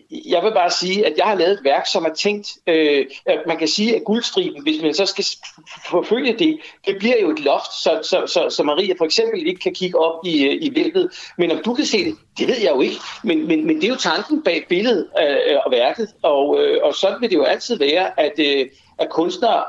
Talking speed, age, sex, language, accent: 235 wpm, 60-79, male, Danish, native